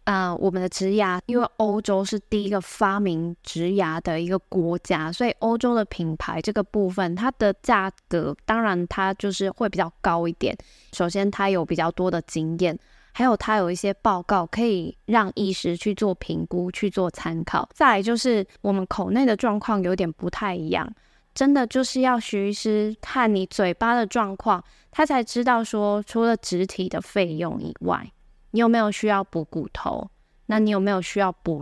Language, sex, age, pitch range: Chinese, female, 10-29, 185-225 Hz